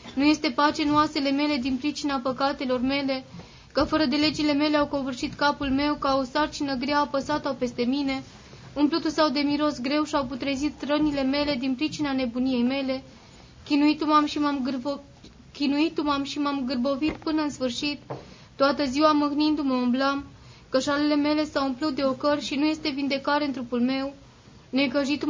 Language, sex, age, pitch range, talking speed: Romanian, female, 20-39, 275-300 Hz, 155 wpm